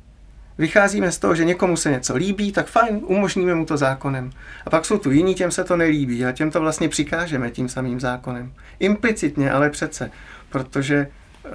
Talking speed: 180 wpm